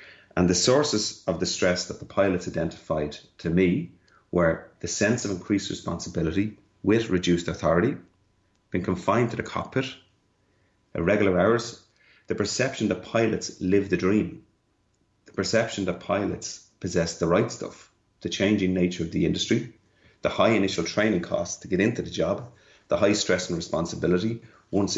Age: 30-49